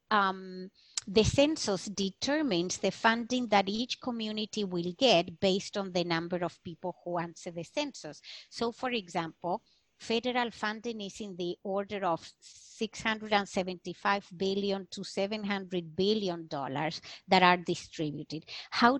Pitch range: 175-215 Hz